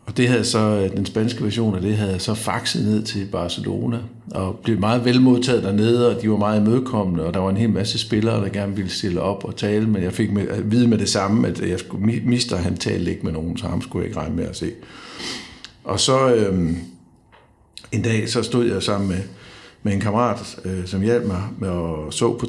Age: 60-79